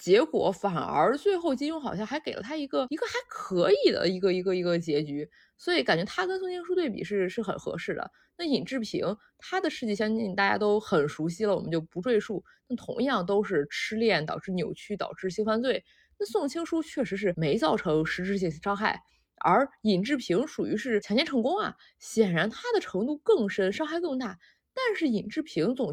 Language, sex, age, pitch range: Chinese, female, 20-39, 200-330 Hz